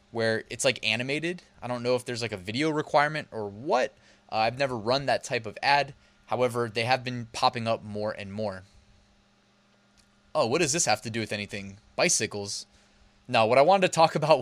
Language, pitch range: English, 110-160 Hz